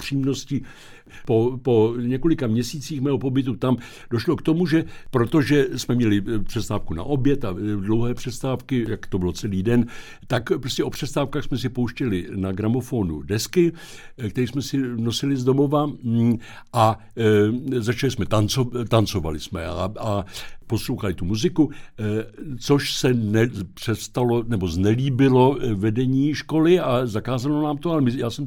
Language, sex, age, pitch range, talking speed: Czech, male, 60-79, 100-130 Hz, 140 wpm